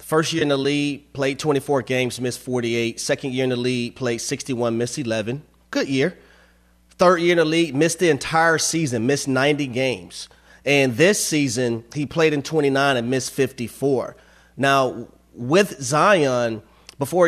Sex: male